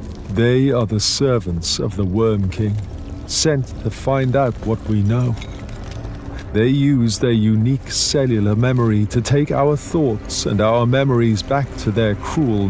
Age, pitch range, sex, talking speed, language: 50-69, 100-125 Hz, male, 150 wpm, English